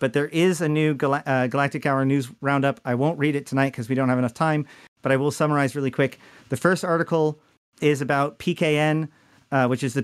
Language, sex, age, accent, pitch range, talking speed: English, male, 40-59, American, 130-150 Hz, 225 wpm